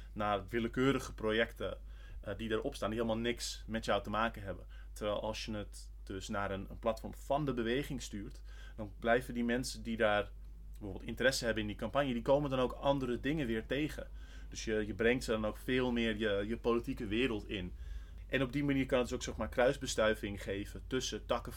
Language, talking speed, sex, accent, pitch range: Dutch, 200 wpm, male, Dutch, 95-125 Hz